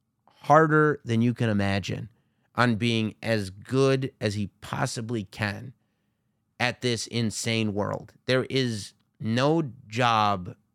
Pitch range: 110-135 Hz